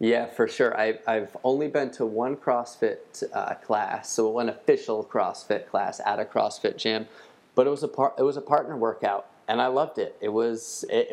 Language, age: English, 30-49